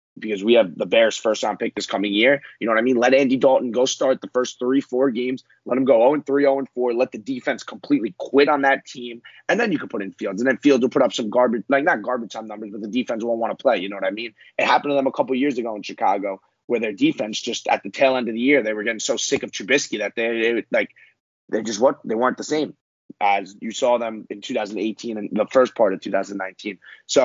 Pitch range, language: 110-135 Hz, English